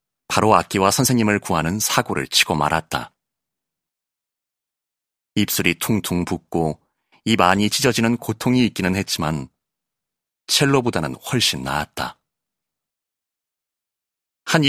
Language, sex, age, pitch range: Korean, male, 30-49, 85-115 Hz